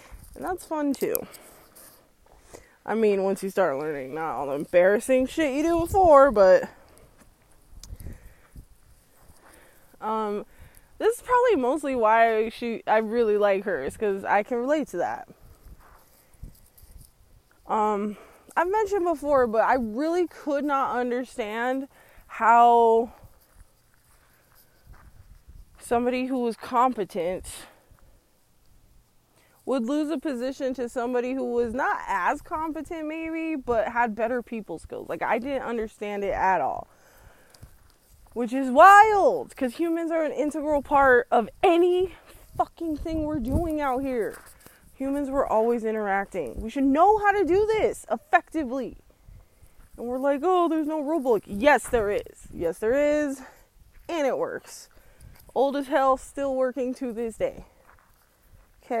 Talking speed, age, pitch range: 130 wpm, 20-39, 225-315 Hz